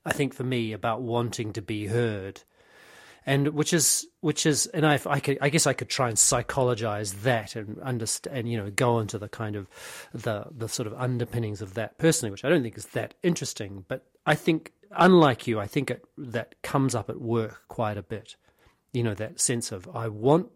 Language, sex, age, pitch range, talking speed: English, male, 40-59, 115-155 Hz, 215 wpm